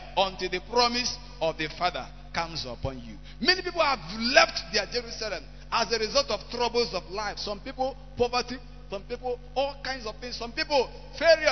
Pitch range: 165-255 Hz